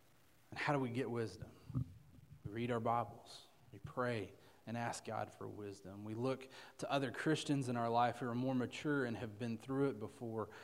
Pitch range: 115-130 Hz